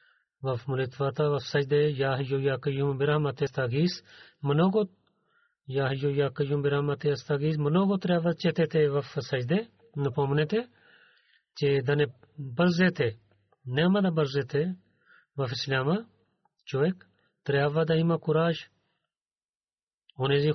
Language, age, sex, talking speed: Bulgarian, 40-59, male, 95 wpm